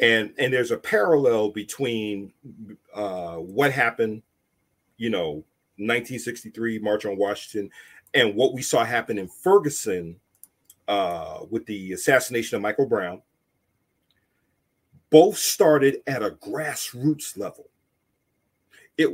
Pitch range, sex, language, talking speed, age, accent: 105-145 Hz, male, English, 115 wpm, 40-59, American